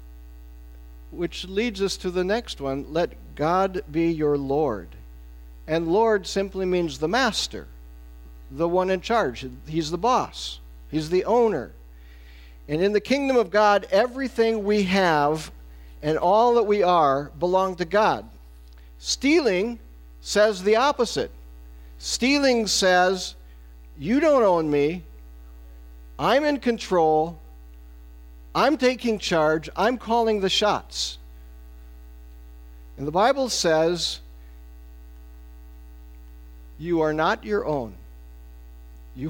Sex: male